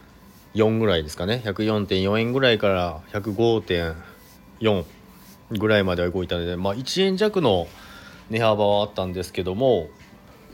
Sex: male